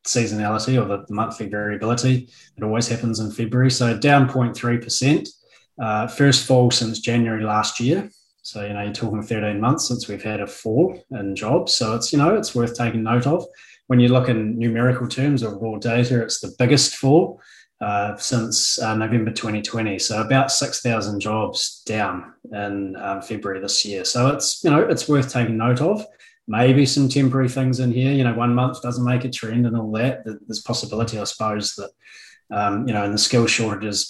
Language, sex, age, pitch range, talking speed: English, male, 20-39, 110-130 Hz, 190 wpm